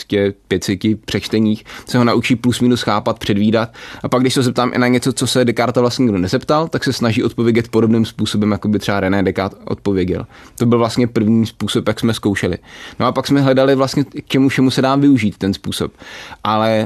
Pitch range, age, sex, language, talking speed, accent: 105-125 Hz, 20-39, male, Czech, 205 wpm, native